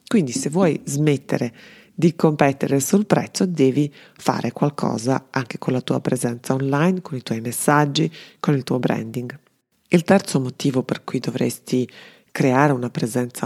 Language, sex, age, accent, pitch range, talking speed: Italian, female, 40-59, native, 125-170 Hz, 150 wpm